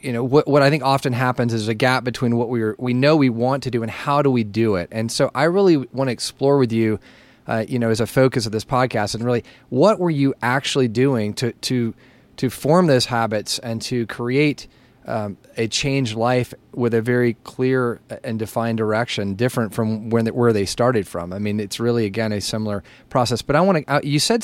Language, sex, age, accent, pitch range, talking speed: English, male, 30-49, American, 110-130 Hz, 230 wpm